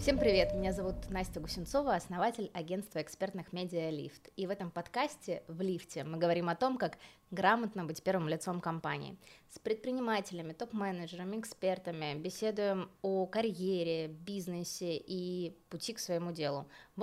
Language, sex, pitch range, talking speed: Russian, female, 170-215 Hz, 145 wpm